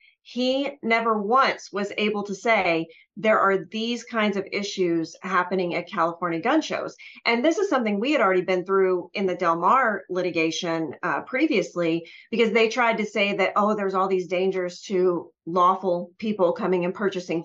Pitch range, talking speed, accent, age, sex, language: 180-250 Hz, 175 wpm, American, 30-49, female, English